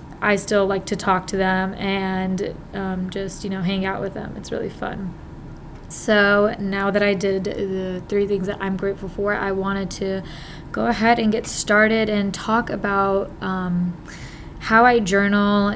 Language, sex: English, female